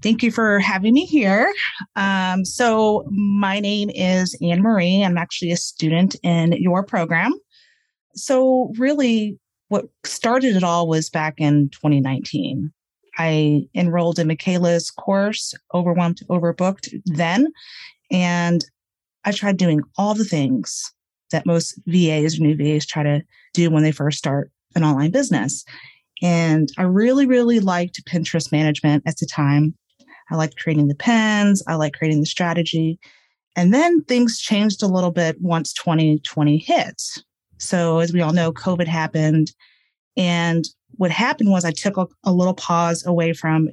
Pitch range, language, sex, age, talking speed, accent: 160-195 Hz, English, female, 30-49, 150 wpm, American